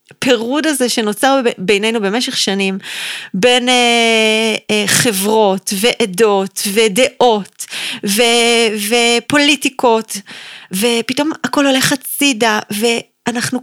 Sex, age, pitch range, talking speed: female, 30-49, 205-265 Hz, 85 wpm